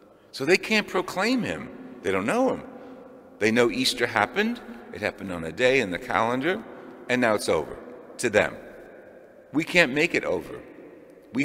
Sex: male